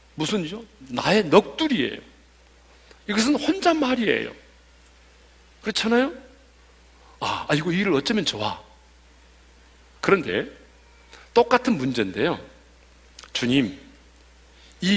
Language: Korean